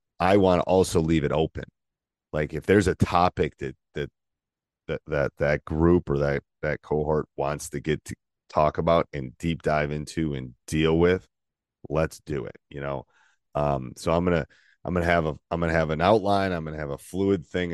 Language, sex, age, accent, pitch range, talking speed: English, male, 30-49, American, 70-85 Hz, 200 wpm